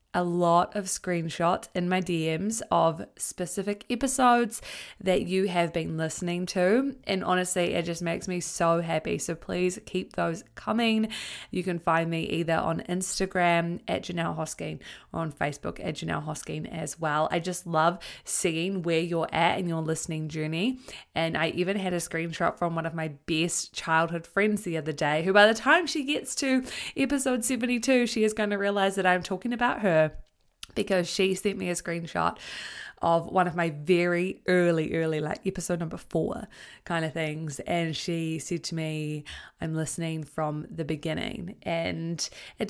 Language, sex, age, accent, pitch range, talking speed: English, female, 20-39, Australian, 160-190 Hz, 175 wpm